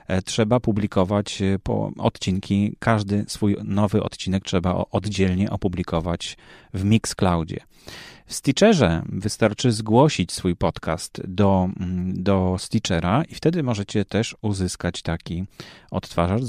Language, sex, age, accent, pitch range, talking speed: Polish, male, 30-49, native, 95-125 Hz, 105 wpm